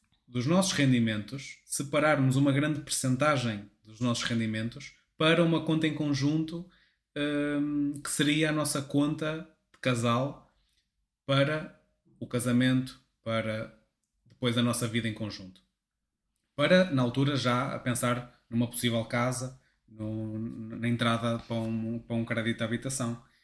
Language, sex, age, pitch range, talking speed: Portuguese, male, 20-39, 115-145 Hz, 135 wpm